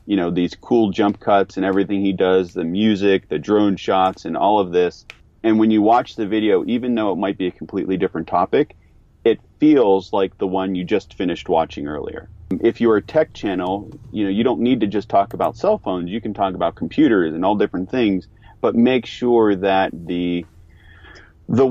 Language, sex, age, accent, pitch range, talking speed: English, male, 30-49, American, 90-110 Hz, 205 wpm